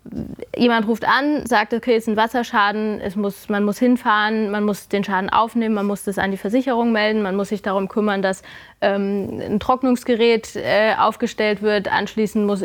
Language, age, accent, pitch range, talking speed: German, 20-39, German, 200-235 Hz, 180 wpm